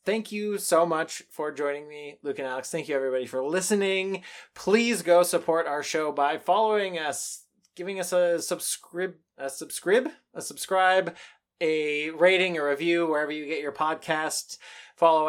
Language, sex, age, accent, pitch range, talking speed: English, male, 20-39, American, 150-195 Hz, 160 wpm